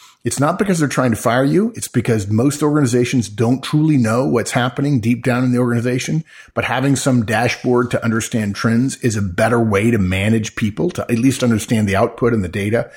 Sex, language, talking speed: male, English, 210 wpm